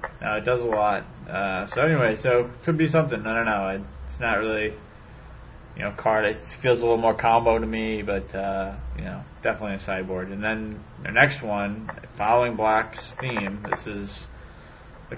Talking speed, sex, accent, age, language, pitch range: 195 wpm, male, American, 20-39, English, 95-115 Hz